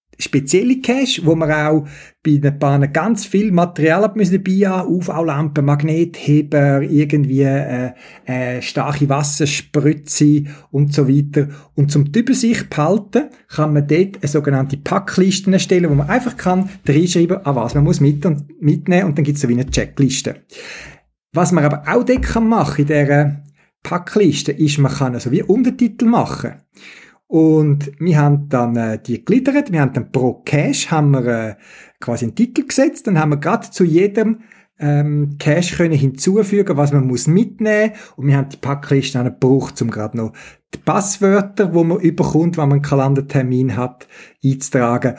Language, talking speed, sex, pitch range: German, 165 wpm, male, 130-170 Hz